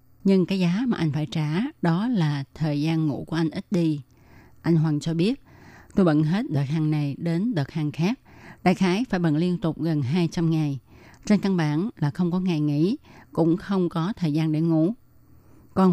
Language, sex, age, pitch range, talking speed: Vietnamese, female, 20-39, 150-185 Hz, 205 wpm